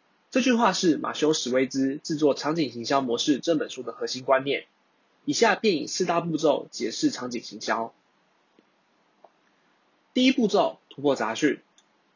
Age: 20-39